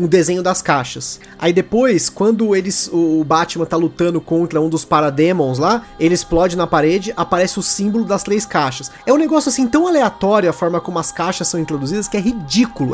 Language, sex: Portuguese, male